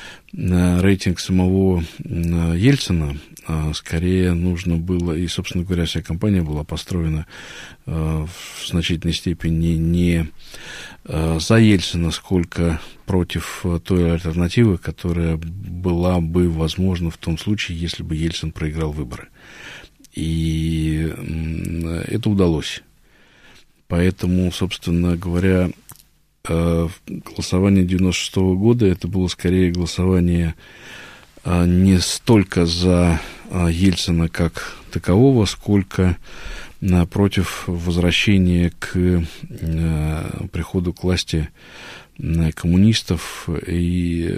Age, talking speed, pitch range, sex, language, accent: 50-69, 85 wpm, 85-95 Hz, male, Russian, native